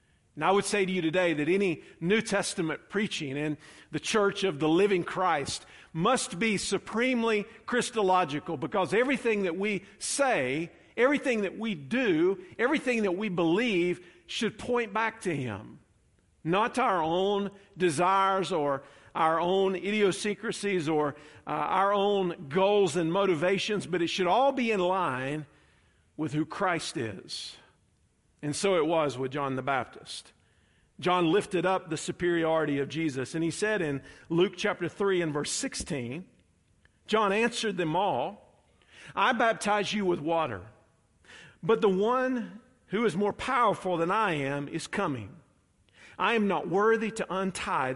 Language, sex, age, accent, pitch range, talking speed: English, male, 50-69, American, 150-205 Hz, 150 wpm